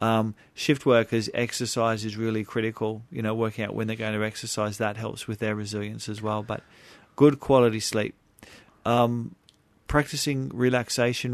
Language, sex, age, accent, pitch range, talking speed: English, male, 40-59, Australian, 105-125 Hz, 160 wpm